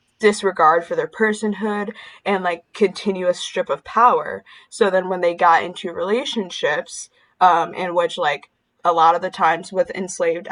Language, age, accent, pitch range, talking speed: English, 10-29, American, 175-215 Hz, 160 wpm